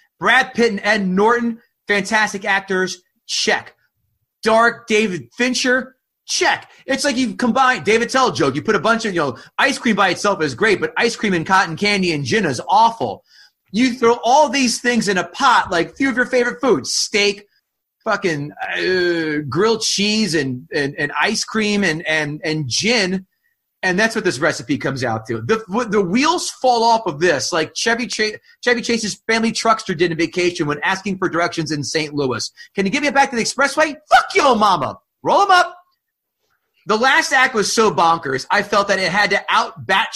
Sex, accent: male, American